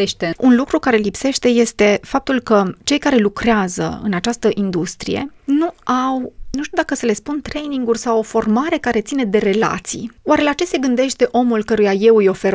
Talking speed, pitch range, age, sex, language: 185 wpm, 200-245 Hz, 30-49, female, Romanian